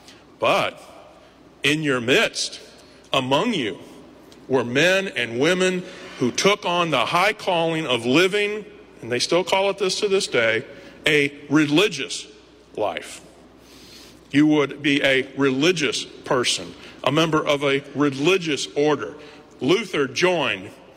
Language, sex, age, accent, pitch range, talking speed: English, male, 50-69, American, 140-200 Hz, 125 wpm